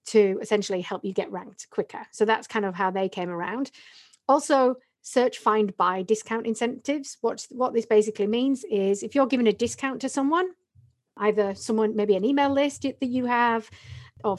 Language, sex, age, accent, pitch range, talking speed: English, female, 40-59, British, 205-255 Hz, 180 wpm